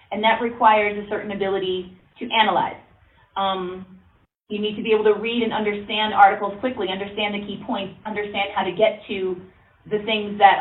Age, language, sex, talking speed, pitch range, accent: 30-49, English, female, 180 wpm, 190-215 Hz, American